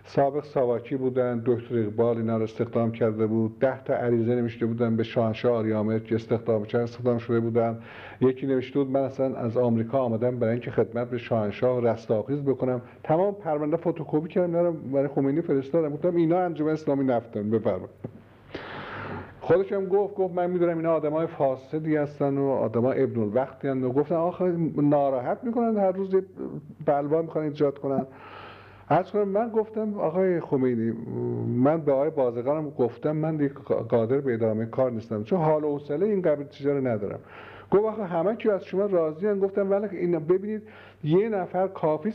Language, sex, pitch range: Persian, male, 120-170 Hz